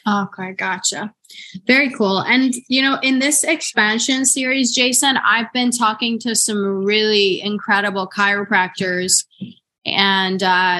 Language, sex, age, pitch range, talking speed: English, female, 20-39, 195-245 Hz, 120 wpm